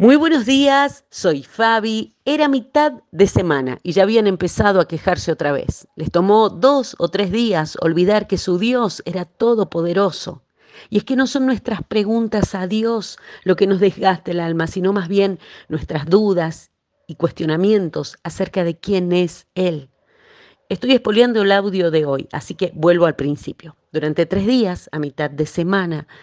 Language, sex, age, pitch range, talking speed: Spanish, female, 40-59, 175-230 Hz, 170 wpm